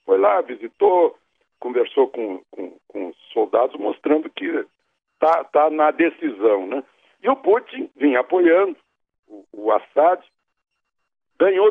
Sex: male